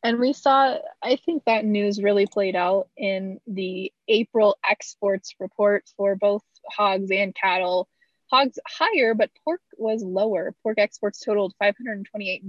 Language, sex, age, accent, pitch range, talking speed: English, female, 20-39, American, 200-260 Hz, 145 wpm